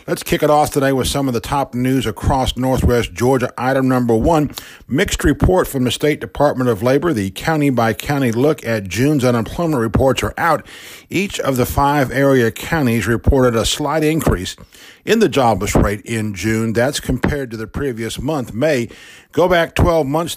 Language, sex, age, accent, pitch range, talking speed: English, male, 50-69, American, 115-140 Hz, 180 wpm